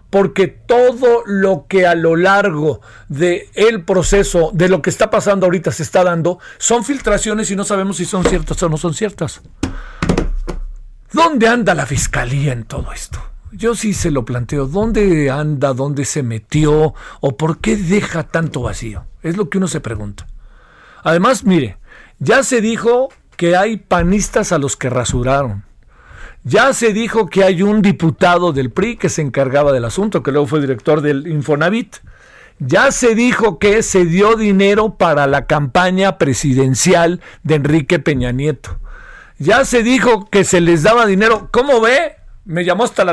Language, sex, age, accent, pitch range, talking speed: Spanish, male, 50-69, Mexican, 150-210 Hz, 165 wpm